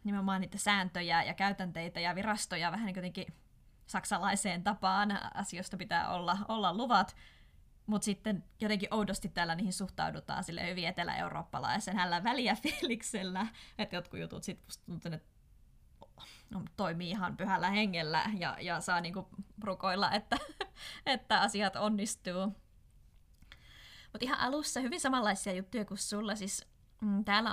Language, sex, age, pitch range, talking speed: Finnish, female, 20-39, 180-210 Hz, 125 wpm